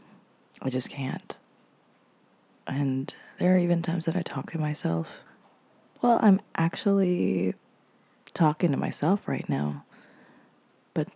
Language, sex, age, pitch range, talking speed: English, female, 20-39, 145-180 Hz, 120 wpm